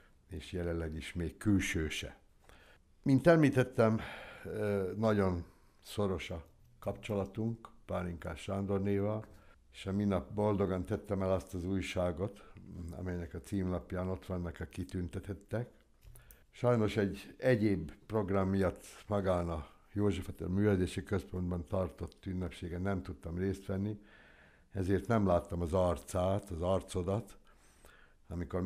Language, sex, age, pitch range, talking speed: Hungarian, male, 60-79, 85-105 Hz, 115 wpm